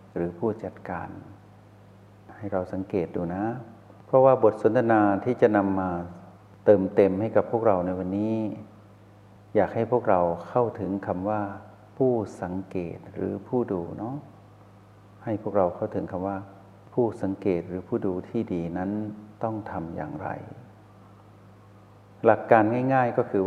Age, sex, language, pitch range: 60-79, male, Thai, 95-105 Hz